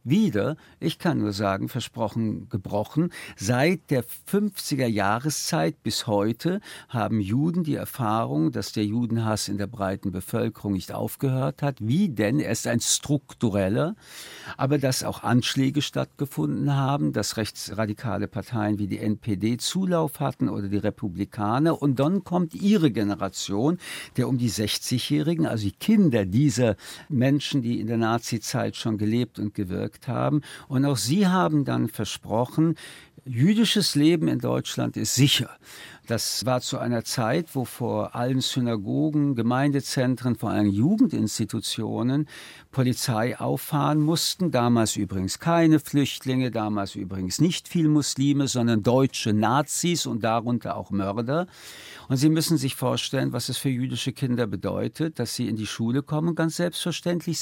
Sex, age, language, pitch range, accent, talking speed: male, 60-79, German, 110-155 Hz, German, 140 wpm